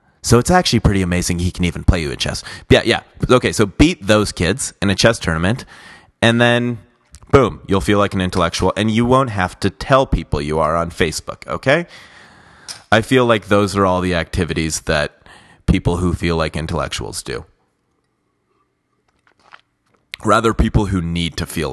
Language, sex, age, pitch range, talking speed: English, male, 30-49, 85-120 Hz, 175 wpm